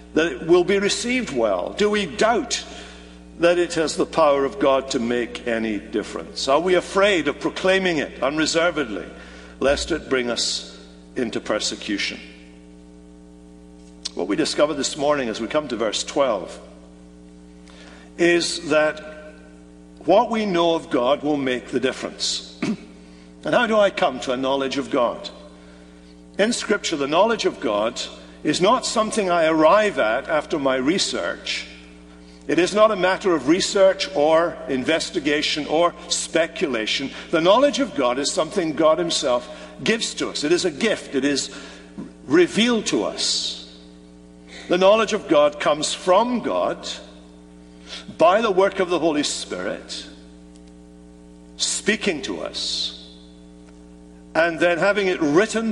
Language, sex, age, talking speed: English, male, 60-79, 145 wpm